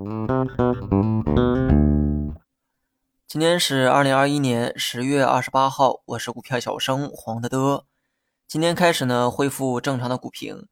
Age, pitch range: 20-39, 120-140 Hz